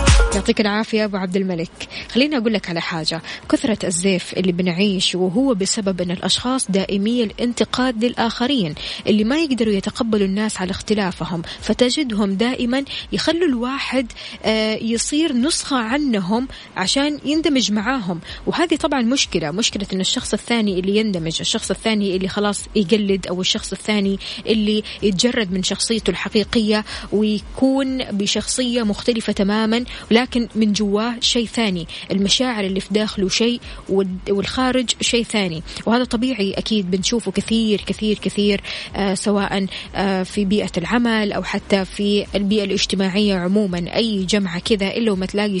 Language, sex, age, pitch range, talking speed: Arabic, female, 20-39, 195-245 Hz, 135 wpm